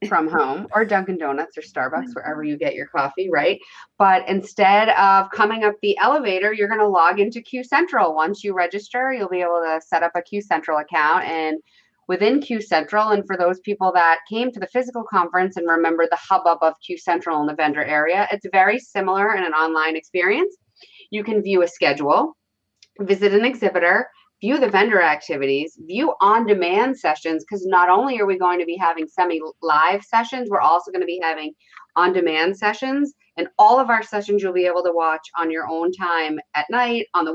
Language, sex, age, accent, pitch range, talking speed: English, female, 30-49, American, 170-210 Hz, 195 wpm